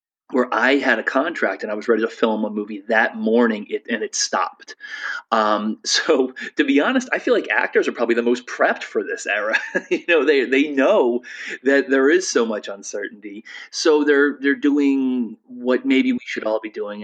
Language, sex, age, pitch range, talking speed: English, male, 30-49, 115-185 Hz, 205 wpm